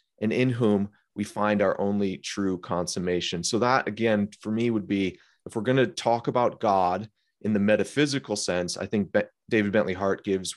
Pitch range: 100-120 Hz